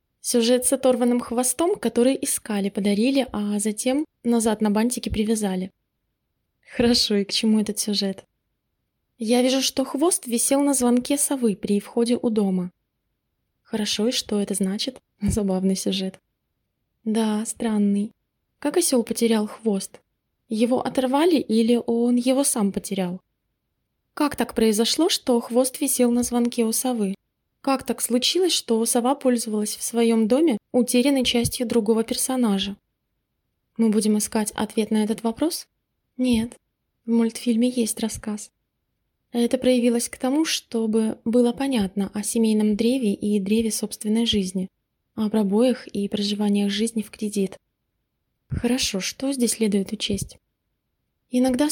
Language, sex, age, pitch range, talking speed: Russian, female, 20-39, 210-250 Hz, 130 wpm